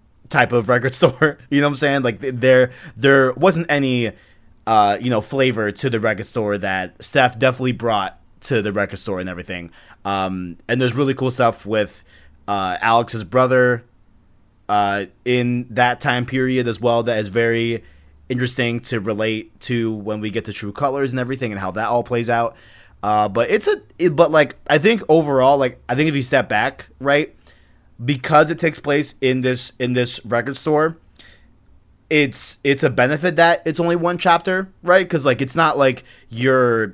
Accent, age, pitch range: American, 20-39, 110-135 Hz